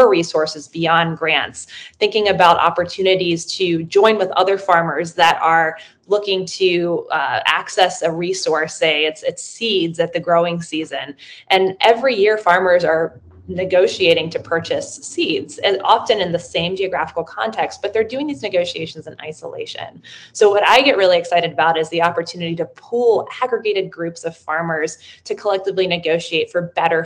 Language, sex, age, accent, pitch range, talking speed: English, female, 20-39, American, 165-195 Hz, 155 wpm